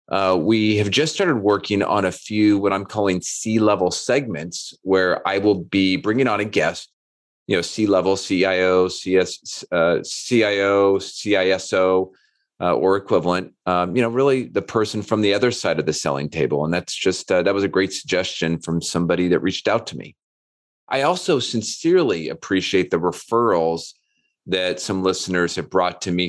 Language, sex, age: English, male, 30-49